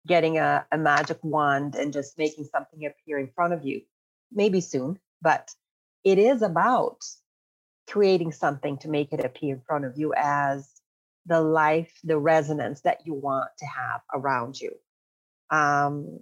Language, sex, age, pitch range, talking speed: English, female, 30-49, 145-170 Hz, 160 wpm